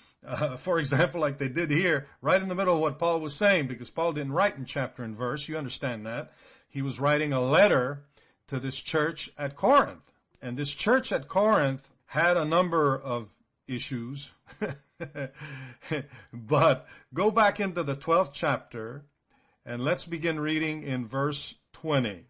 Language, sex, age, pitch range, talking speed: English, male, 50-69, 130-180 Hz, 165 wpm